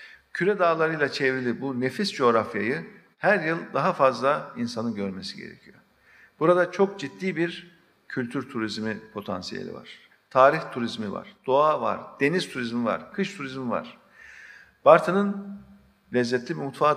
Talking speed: 125 wpm